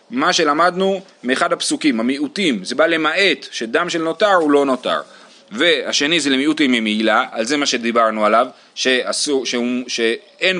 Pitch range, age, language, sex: 115-170 Hz, 30-49, Hebrew, male